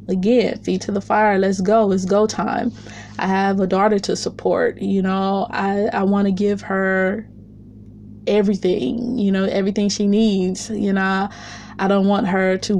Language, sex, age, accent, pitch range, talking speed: English, female, 20-39, American, 185-215 Hz, 175 wpm